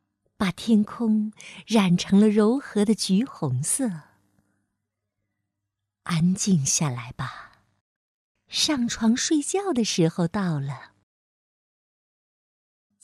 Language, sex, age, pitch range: Chinese, female, 50-69, 135-230 Hz